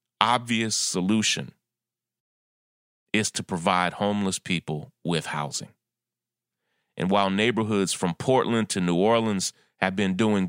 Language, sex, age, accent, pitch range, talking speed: English, male, 30-49, American, 95-125 Hz, 115 wpm